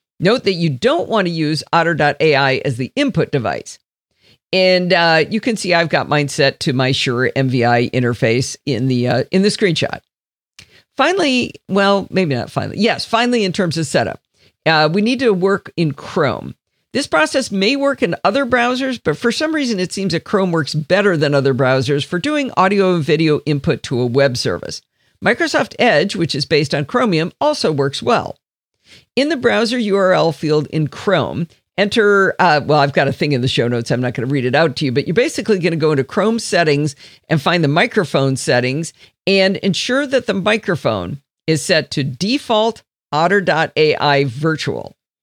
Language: English